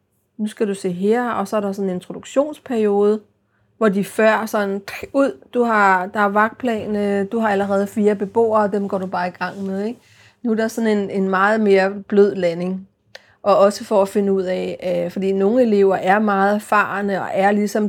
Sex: female